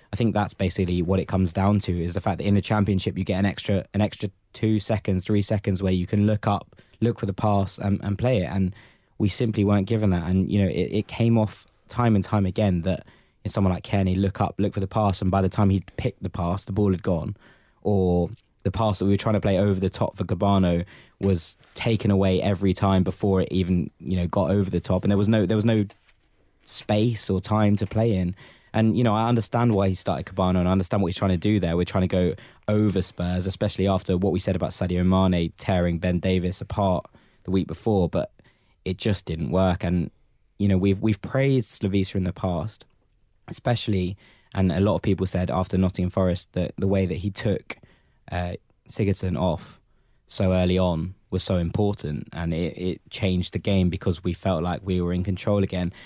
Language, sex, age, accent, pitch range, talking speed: English, male, 20-39, British, 90-105 Hz, 230 wpm